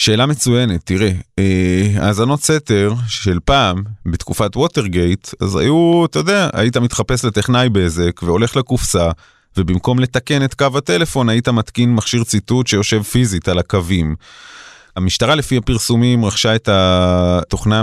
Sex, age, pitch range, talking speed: male, 30-49, 95-125 Hz, 130 wpm